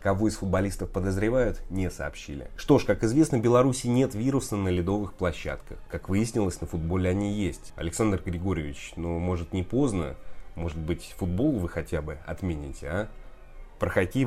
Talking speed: 165 wpm